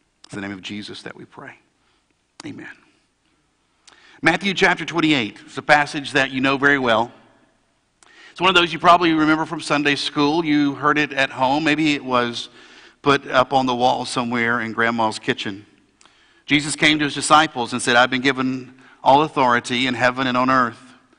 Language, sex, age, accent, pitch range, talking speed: English, male, 50-69, American, 135-200 Hz, 180 wpm